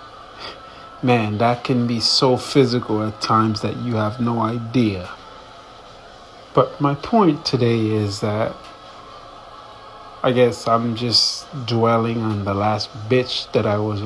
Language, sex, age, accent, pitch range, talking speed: English, male, 30-49, American, 110-130 Hz, 130 wpm